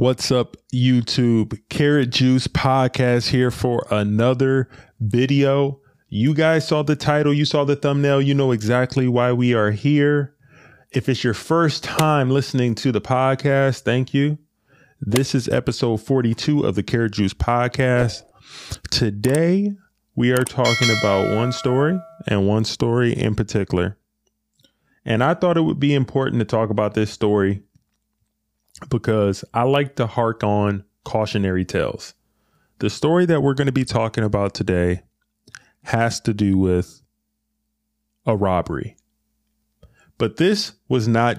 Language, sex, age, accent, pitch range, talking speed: English, male, 20-39, American, 110-140 Hz, 140 wpm